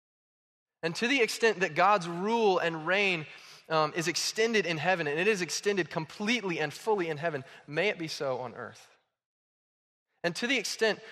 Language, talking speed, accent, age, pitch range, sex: English, 180 wpm, American, 20-39, 140-185 Hz, male